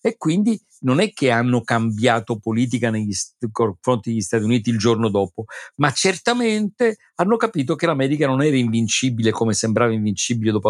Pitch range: 105-135 Hz